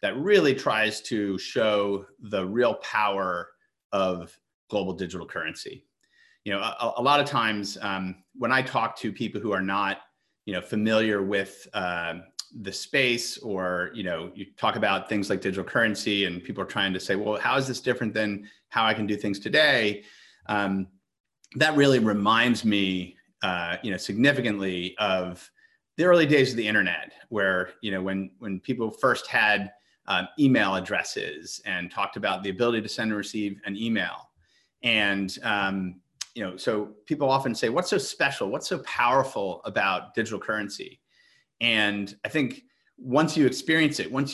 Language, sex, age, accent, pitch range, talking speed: English, male, 30-49, American, 95-125 Hz, 170 wpm